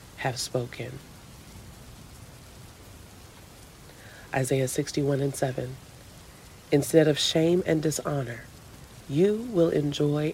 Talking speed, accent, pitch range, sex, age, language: 80 wpm, American, 120-145 Hz, female, 40-59, English